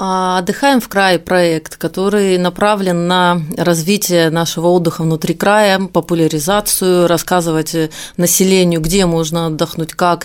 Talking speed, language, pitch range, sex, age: 110 wpm, Russian, 160-185 Hz, female, 30-49